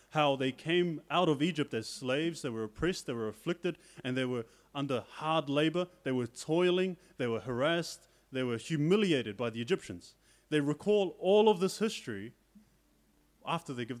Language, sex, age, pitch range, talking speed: English, male, 30-49, 120-165 Hz, 175 wpm